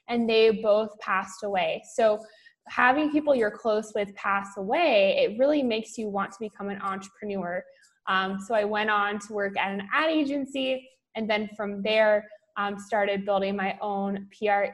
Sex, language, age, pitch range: female, English, 20-39, 210-240 Hz